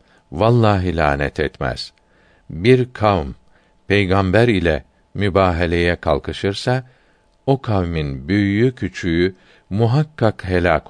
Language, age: Turkish, 60-79